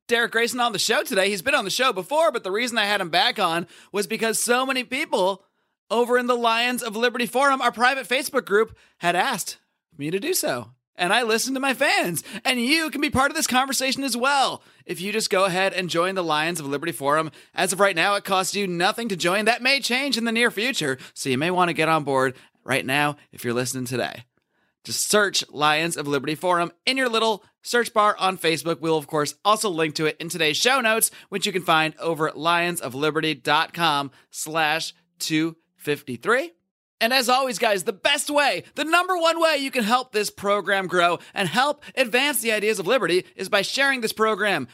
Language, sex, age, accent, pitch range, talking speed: English, male, 30-49, American, 170-245 Hz, 220 wpm